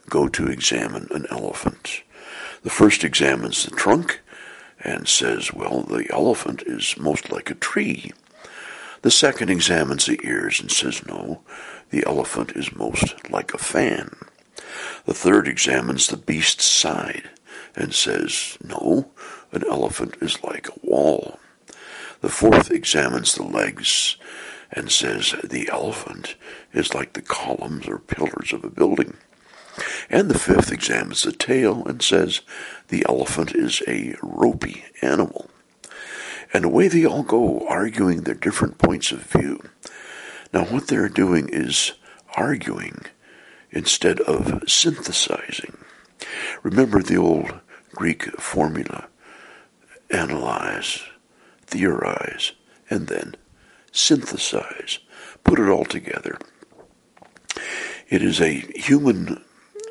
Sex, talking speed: male, 120 wpm